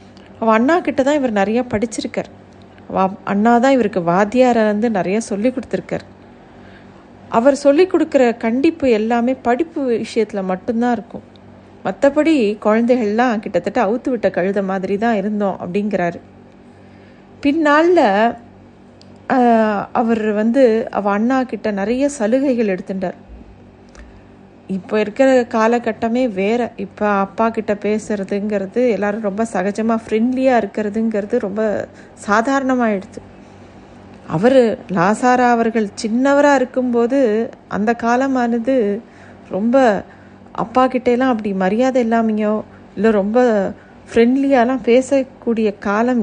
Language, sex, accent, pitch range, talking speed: Tamil, female, native, 205-250 Hz, 95 wpm